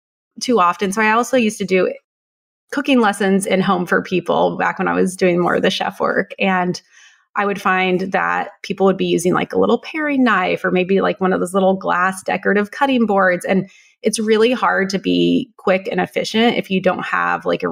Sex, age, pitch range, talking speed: female, 30-49, 190-235 Hz, 215 wpm